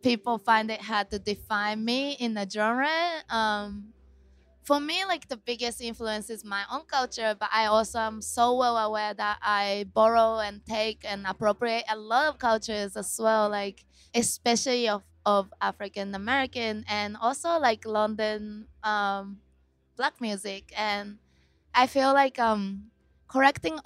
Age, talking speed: 20-39, 150 wpm